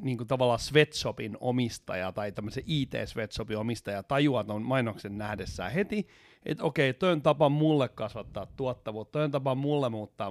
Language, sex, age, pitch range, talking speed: Finnish, male, 30-49, 110-150 Hz, 150 wpm